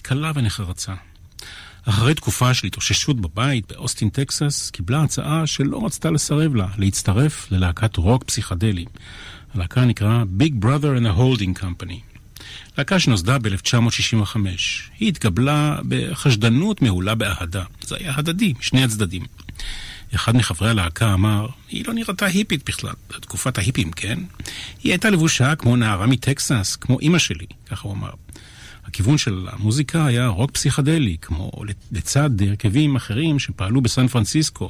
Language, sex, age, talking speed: Hebrew, male, 40-59, 135 wpm